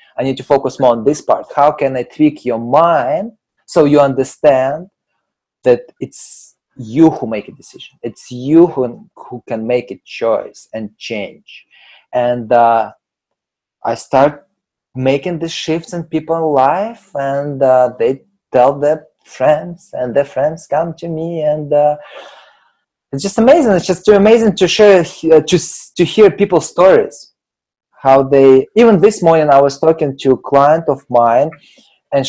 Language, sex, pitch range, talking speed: English, male, 120-160 Hz, 160 wpm